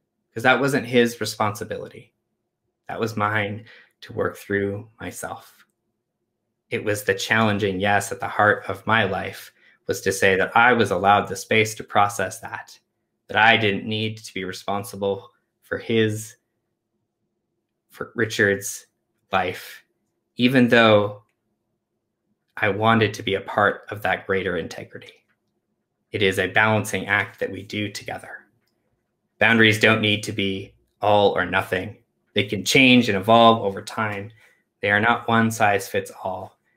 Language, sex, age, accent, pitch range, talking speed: English, male, 20-39, American, 100-115 Hz, 145 wpm